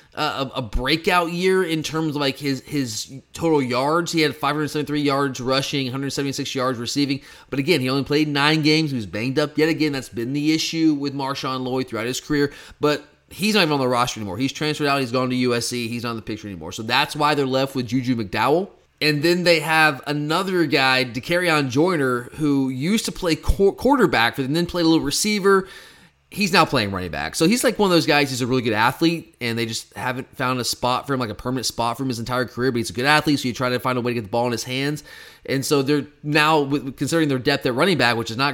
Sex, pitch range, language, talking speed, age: male, 125-155 Hz, English, 250 wpm, 30-49